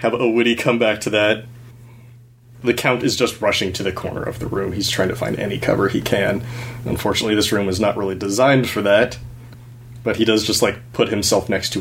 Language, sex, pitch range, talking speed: English, male, 105-120 Hz, 220 wpm